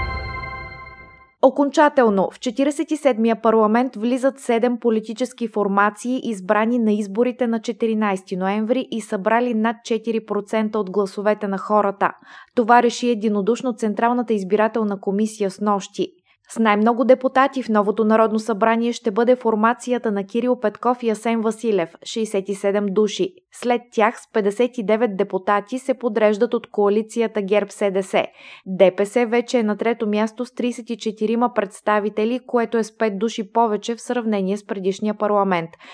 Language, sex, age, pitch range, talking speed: Bulgarian, female, 20-39, 205-240 Hz, 130 wpm